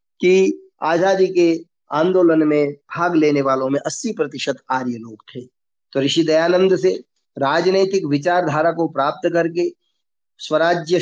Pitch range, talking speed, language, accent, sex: 135-170 Hz, 130 wpm, Hindi, native, male